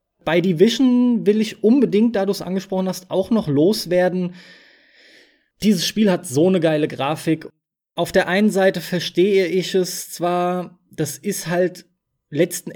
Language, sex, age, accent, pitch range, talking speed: German, male, 20-39, German, 155-205 Hz, 150 wpm